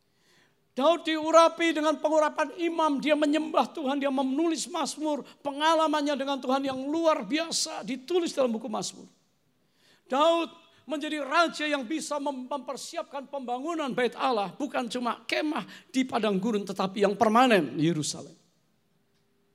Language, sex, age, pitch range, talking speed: English, male, 50-69, 200-300 Hz, 125 wpm